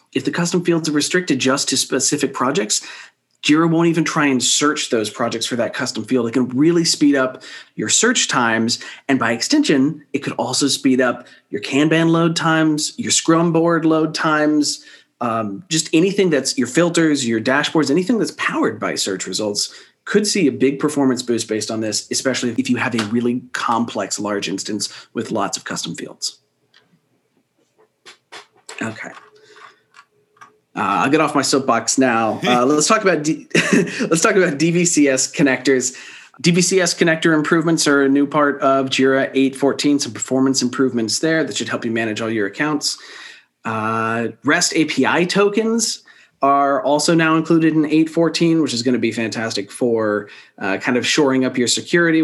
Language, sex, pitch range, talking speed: English, male, 115-160 Hz, 170 wpm